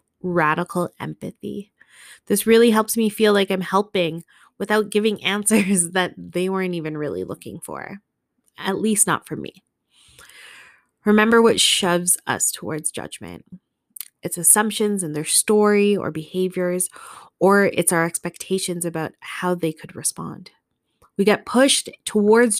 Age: 20-39